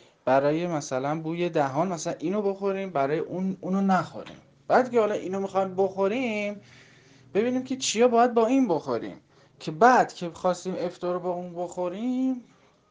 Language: Persian